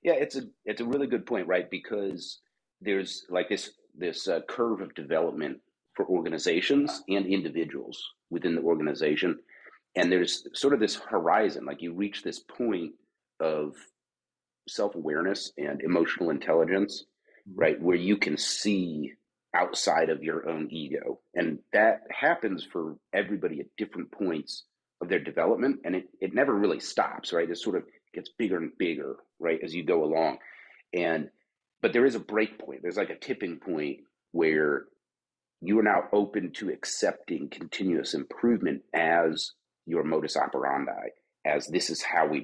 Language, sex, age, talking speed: English, male, 40-59, 155 wpm